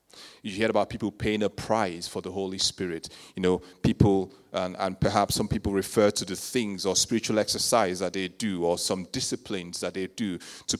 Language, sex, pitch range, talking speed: English, male, 95-120 Hz, 200 wpm